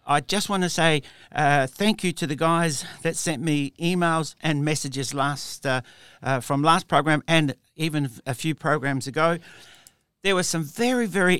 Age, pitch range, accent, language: 60-79, 135-165 Hz, Australian, English